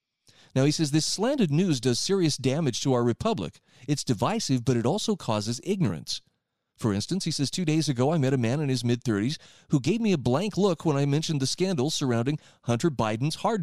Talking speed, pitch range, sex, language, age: 210 wpm, 125-165 Hz, male, English, 30-49